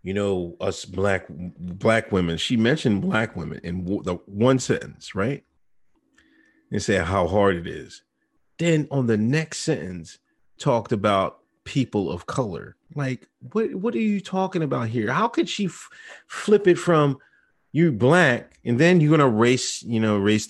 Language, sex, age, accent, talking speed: English, male, 30-49, American, 165 wpm